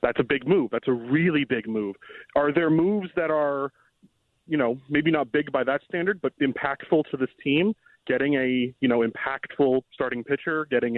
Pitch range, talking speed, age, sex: 125-160 Hz, 190 wpm, 30-49, male